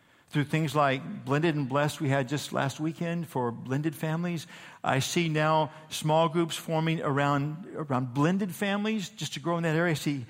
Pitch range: 125-170 Hz